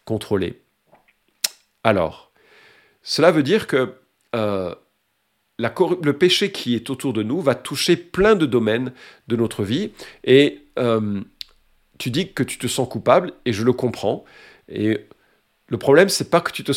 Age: 50-69